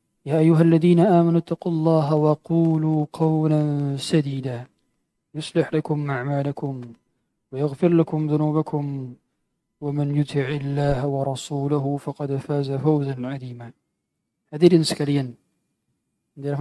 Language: Indonesian